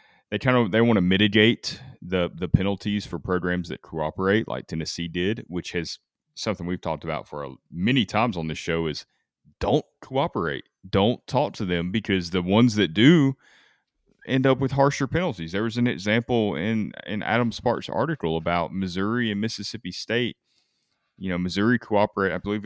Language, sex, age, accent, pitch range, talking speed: English, male, 30-49, American, 85-105 Hz, 175 wpm